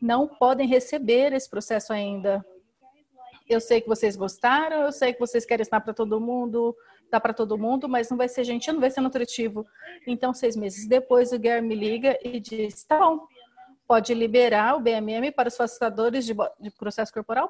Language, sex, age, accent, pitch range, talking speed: English, female, 40-59, Brazilian, 215-260 Hz, 185 wpm